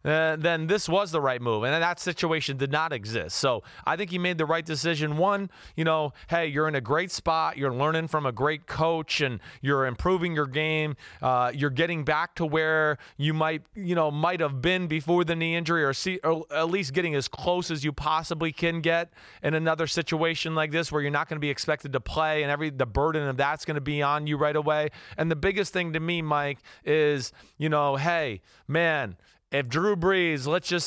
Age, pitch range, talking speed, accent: 30-49, 145-175 Hz, 225 wpm, American